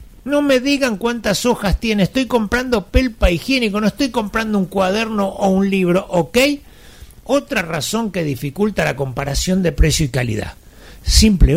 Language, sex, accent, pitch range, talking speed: Spanish, male, Argentinian, 170-255 Hz, 155 wpm